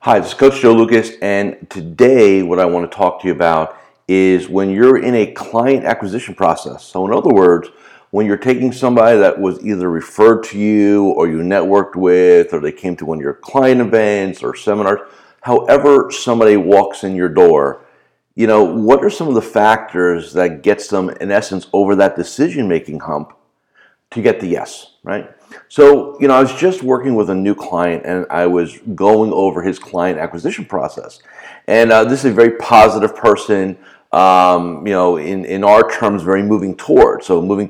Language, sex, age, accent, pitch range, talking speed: English, male, 50-69, American, 90-120 Hz, 195 wpm